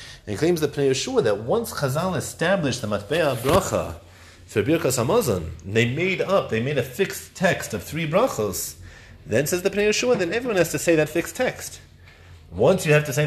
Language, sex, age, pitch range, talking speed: English, male, 30-49, 95-145 Hz, 200 wpm